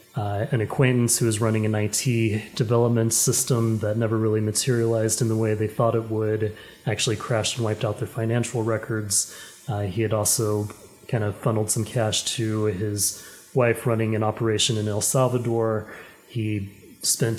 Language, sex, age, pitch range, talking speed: English, male, 30-49, 110-120 Hz, 170 wpm